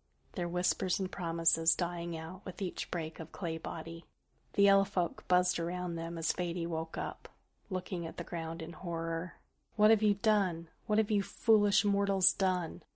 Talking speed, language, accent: 175 wpm, English, American